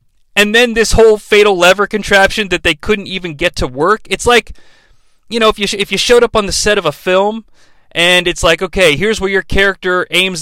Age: 30-49